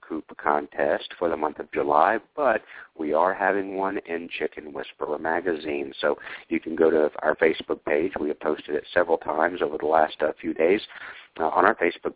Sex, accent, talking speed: male, American, 195 wpm